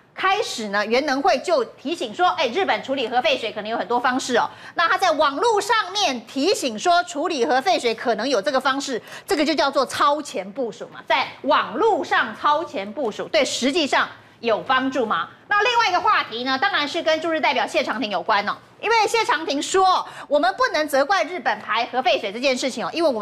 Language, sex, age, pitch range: Chinese, female, 30-49, 255-370 Hz